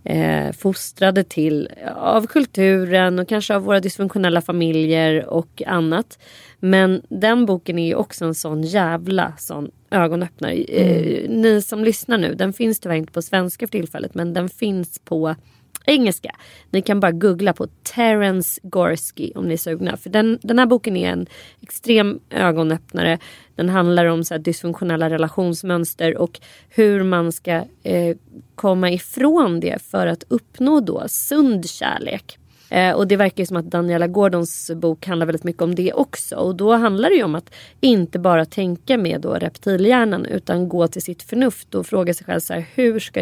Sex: female